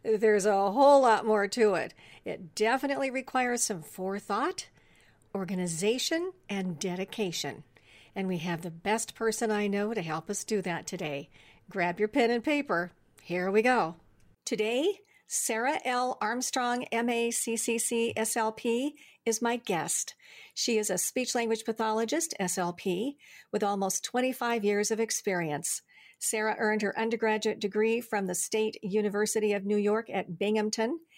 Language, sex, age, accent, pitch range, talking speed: English, female, 50-69, American, 190-240 Hz, 140 wpm